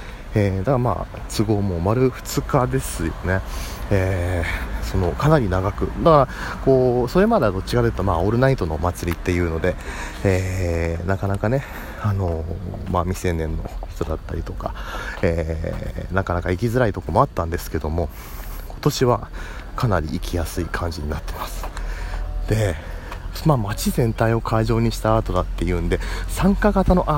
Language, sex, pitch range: Japanese, male, 85-110 Hz